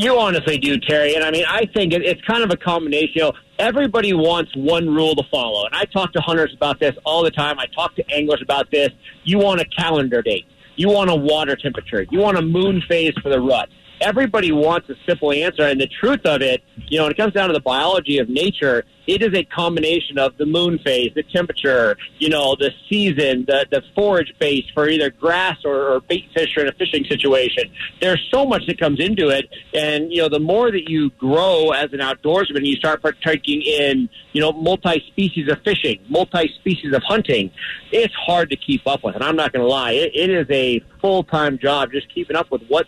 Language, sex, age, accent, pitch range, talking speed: English, male, 40-59, American, 145-185 Hz, 225 wpm